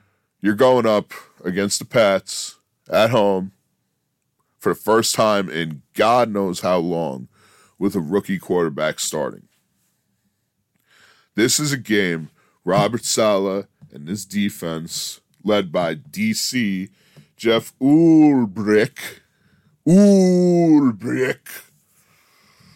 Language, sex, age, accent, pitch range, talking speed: English, female, 10-29, American, 95-130 Hz, 100 wpm